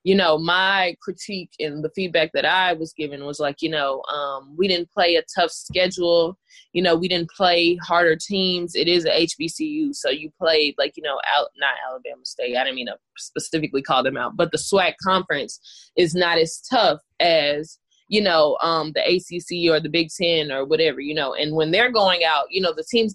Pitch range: 155-190 Hz